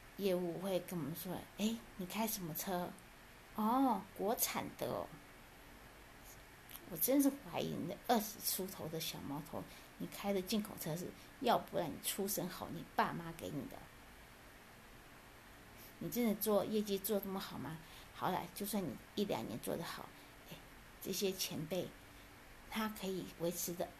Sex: female